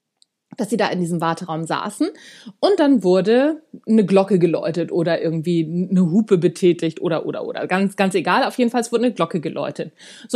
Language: German